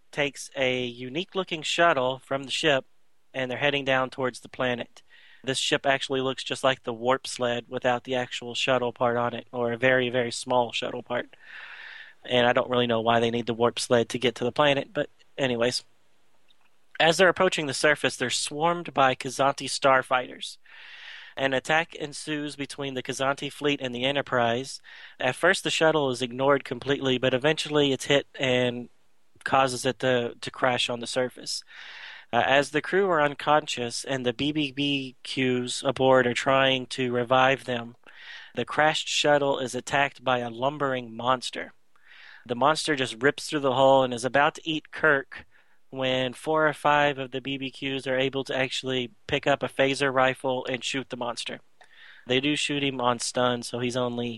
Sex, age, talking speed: male, 30-49, 180 wpm